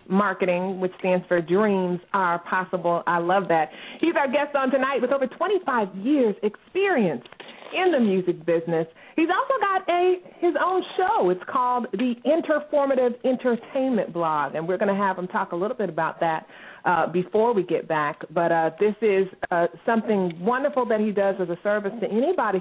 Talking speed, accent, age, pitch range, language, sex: 185 wpm, American, 30-49, 180-245 Hz, English, female